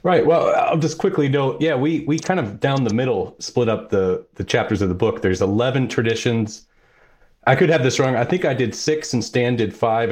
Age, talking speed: 30-49, 230 wpm